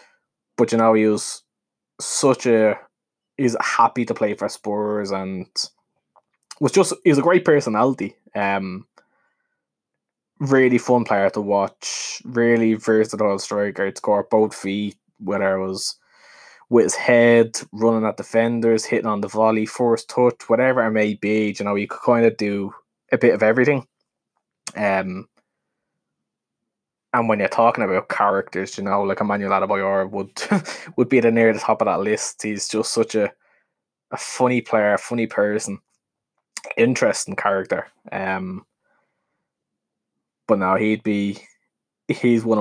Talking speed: 145 wpm